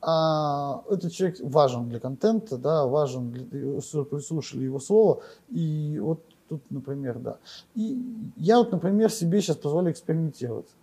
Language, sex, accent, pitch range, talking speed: Russian, male, native, 145-200 Hz, 135 wpm